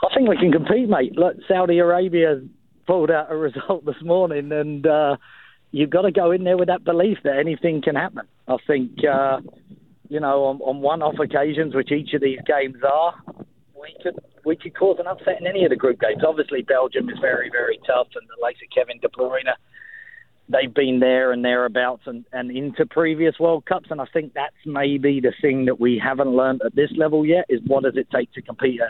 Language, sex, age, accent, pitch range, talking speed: English, male, 40-59, British, 130-165 Hz, 220 wpm